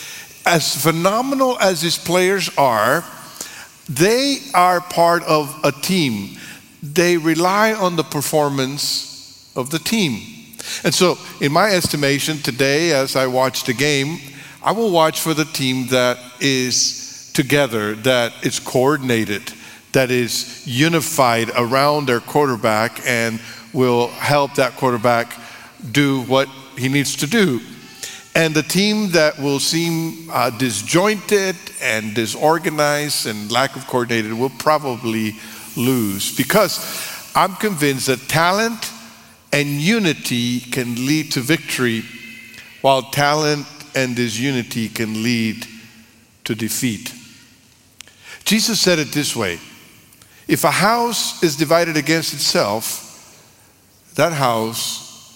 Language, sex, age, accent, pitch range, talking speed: English, male, 50-69, American, 120-165 Hz, 120 wpm